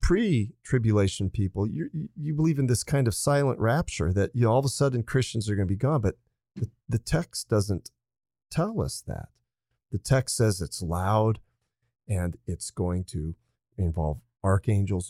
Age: 40-59